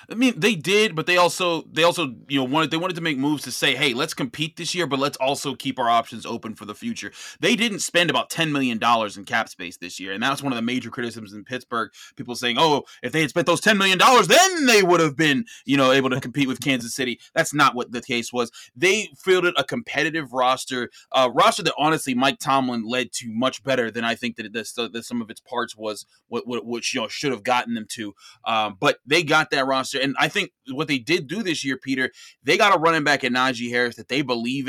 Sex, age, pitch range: male, 20-39, 120-155 Hz